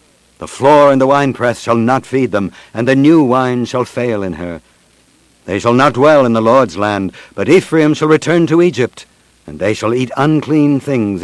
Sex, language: male, English